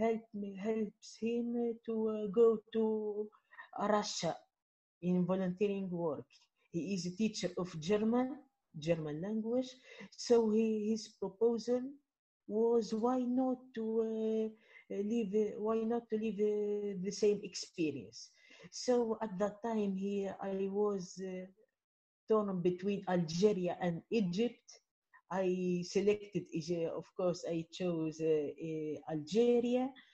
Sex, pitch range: female, 180-225 Hz